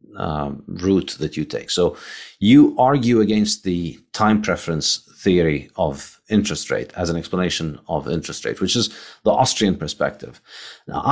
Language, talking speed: English, 150 wpm